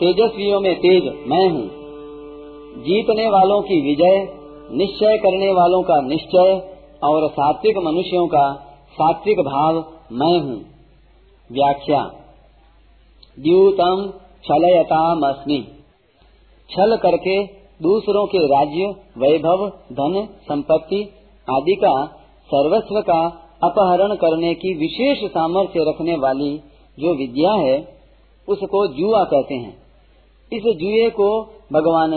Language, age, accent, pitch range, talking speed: Hindi, 40-59, native, 155-205 Hz, 105 wpm